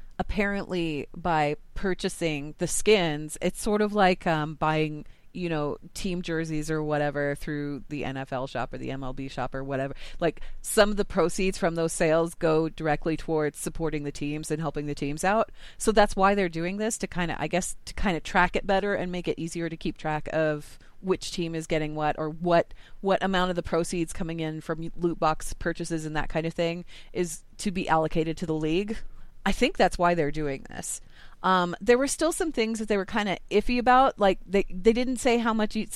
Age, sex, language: 30-49, female, English